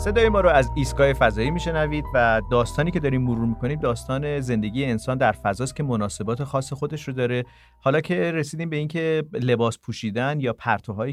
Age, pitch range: 40-59, 115-155 Hz